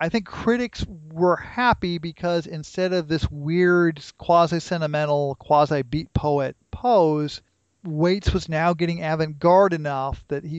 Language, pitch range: English, 140-180 Hz